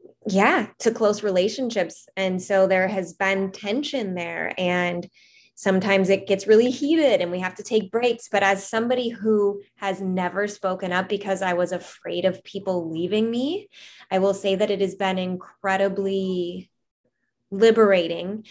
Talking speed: 155 wpm